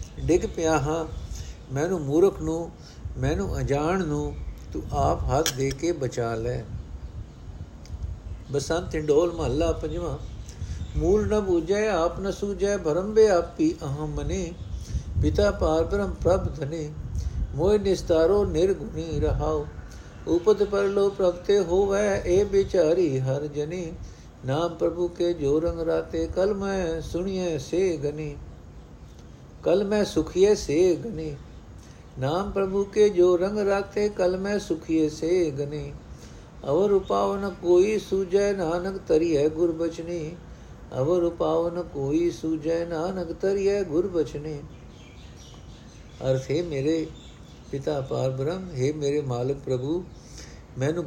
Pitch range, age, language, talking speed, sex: 140-185 Hz, 60-79, Punjabi, 115 wpm, male